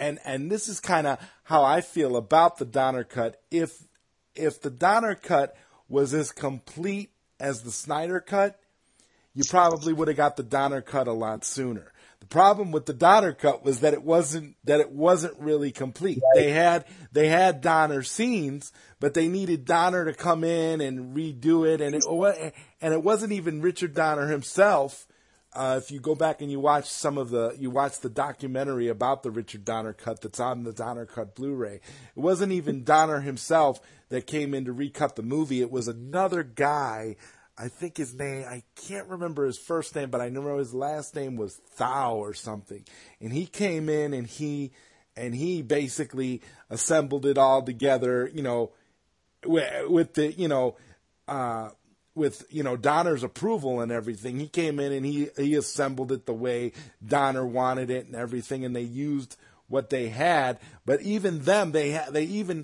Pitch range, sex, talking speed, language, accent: 125-160 Hz, male, 185 wpm, English, American